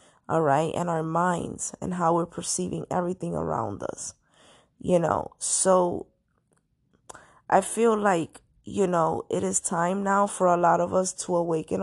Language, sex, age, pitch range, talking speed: English, female, 20-39, 170-190 Hz, 155 wpm